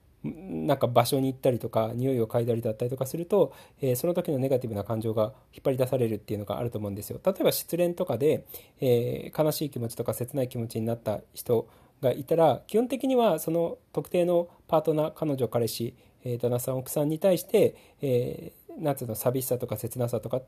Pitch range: 115-165 Hz